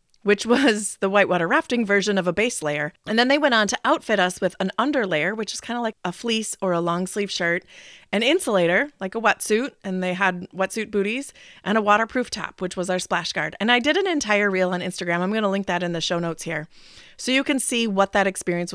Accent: American